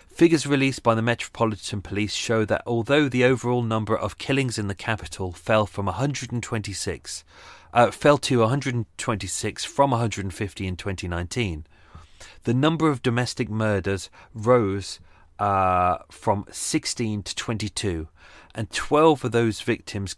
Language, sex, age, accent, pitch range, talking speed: English, male, 30-49, British, 95-115 Hz, 130 wpm